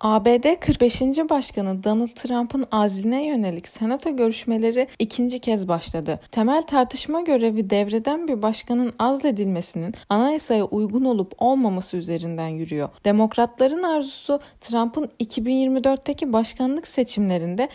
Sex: female